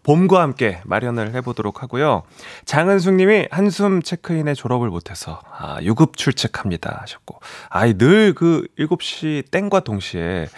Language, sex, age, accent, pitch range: Korean, male, 30-49, native, 110-170 Hz